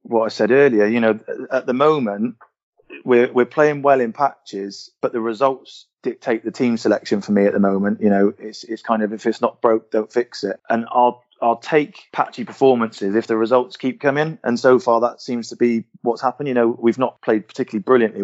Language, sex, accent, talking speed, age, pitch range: English, male, British, 220 wpm, 20-39, 110-125 Hz